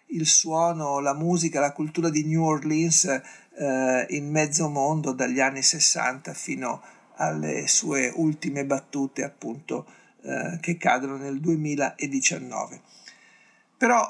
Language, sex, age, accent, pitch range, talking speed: Italian, male, 50-69, native, 135-165 Hz, 120 wpm